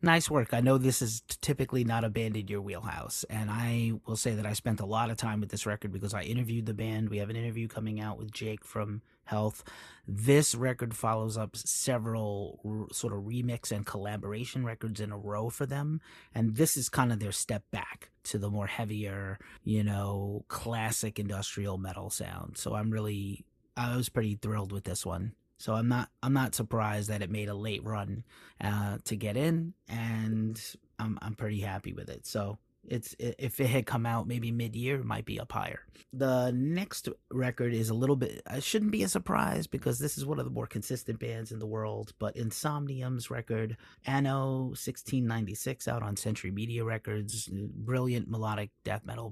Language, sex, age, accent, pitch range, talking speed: English, male, 30-49, American, 105-120 Hz, 195 wpm